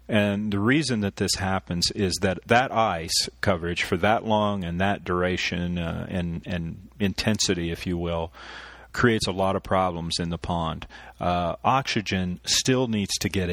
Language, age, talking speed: English, 40-59, 170 wpm